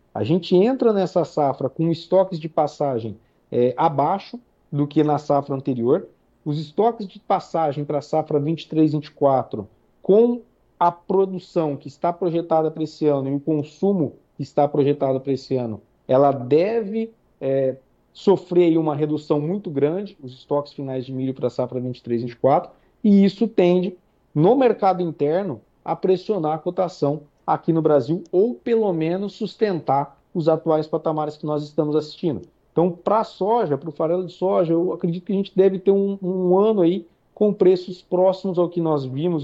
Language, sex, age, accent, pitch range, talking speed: Portuguese, male, 50-69, Brazilian, 145-185 Hz, 165 wpm